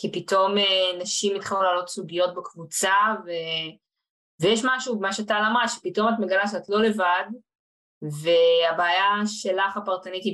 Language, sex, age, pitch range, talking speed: Hebrew, female, 20-39, 165-210 Hz, 130 wpm